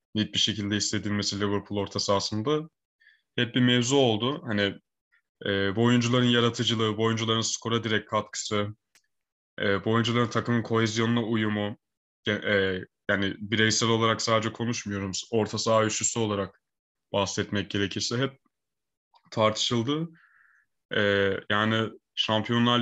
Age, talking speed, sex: 20-39, 115 wpm, male